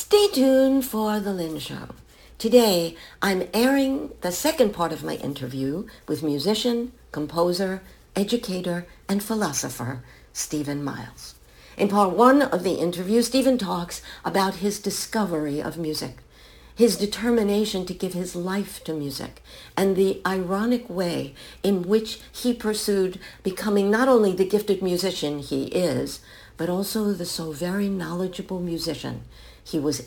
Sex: female